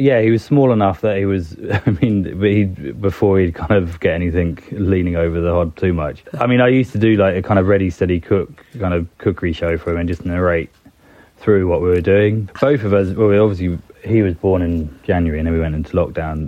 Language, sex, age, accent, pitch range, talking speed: English, male, 20-39, British, 85-100 Hz, 245 wpm